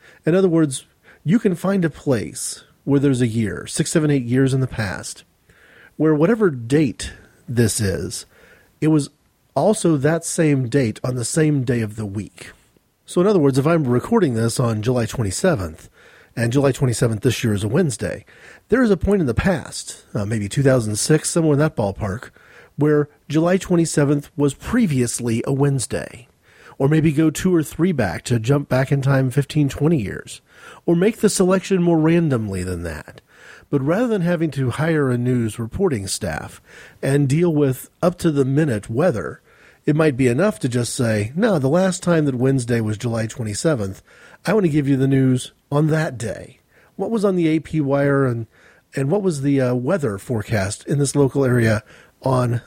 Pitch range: 120-160 Hz